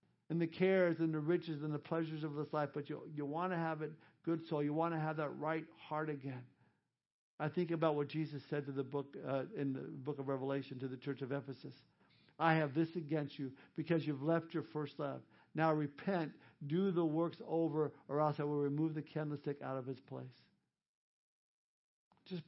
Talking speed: 210 wpm